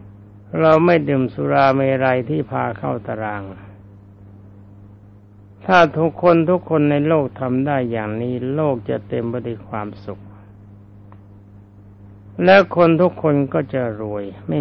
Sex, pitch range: male, 100-140 Hz